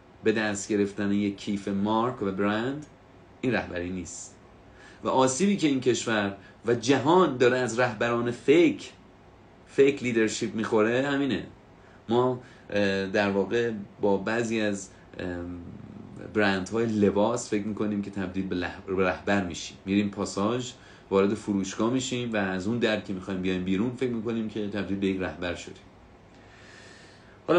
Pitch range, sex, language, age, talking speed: 95-115 Hz, male, Persian, 30-49, 135 wpm